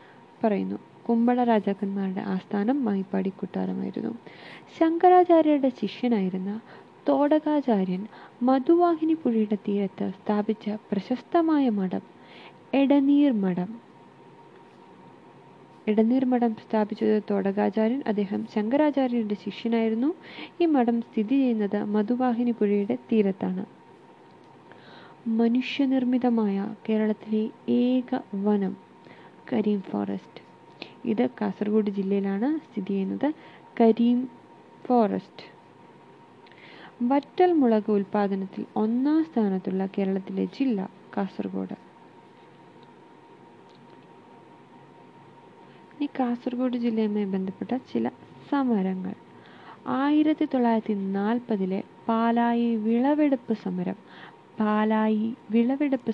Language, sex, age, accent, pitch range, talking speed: Malayalam, female, 20-39, native, 200-255 Hz, 65 wpm